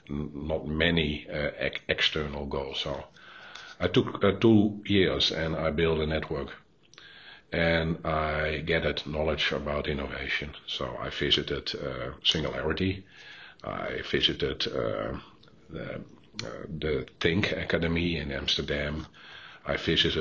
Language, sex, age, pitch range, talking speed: English, male, 50-69, 75-85 Hz, 115 wpm